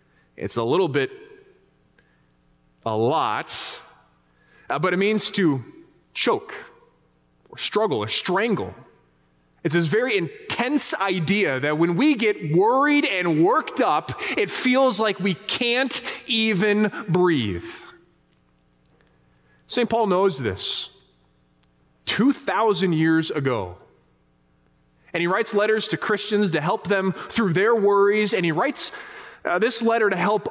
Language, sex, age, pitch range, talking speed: English, male, 30-49, 150-220 Hz, 125 wpm